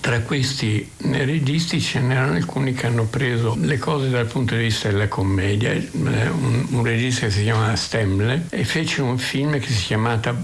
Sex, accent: male, native